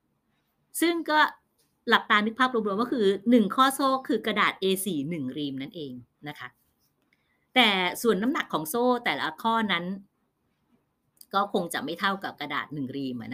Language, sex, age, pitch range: Thai, female, 30-49, 145-235 Hz